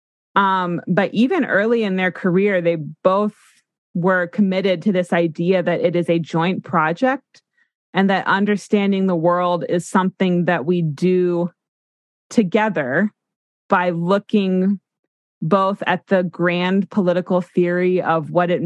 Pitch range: 175-200 Hz